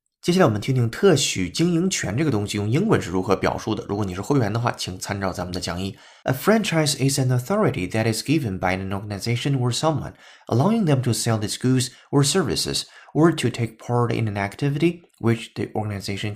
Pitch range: 100-140 Hz